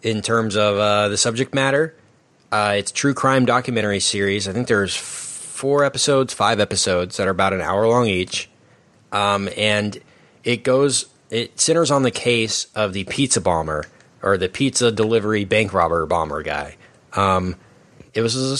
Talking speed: 175 wpm